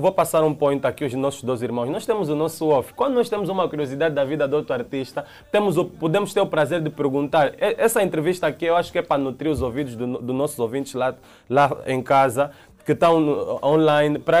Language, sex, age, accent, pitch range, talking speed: Portuguese, male, 20-39, Brazilian, 135-170 Hz, 235 wpm